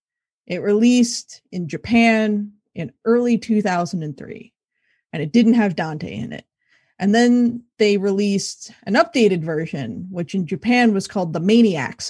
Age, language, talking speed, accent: 20-39, English, 140 wpm, American